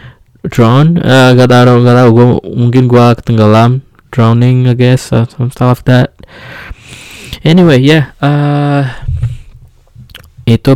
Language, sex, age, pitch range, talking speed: Indonesian, male, 20-39, 100-120 Hz, 110 wpm